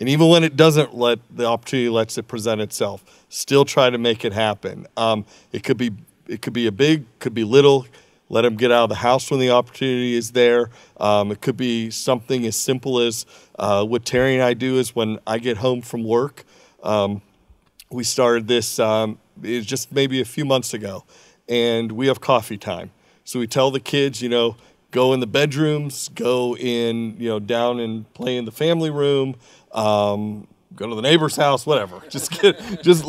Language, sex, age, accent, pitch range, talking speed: English, male, 40-59, American, 115-145 Hz, 200 wpm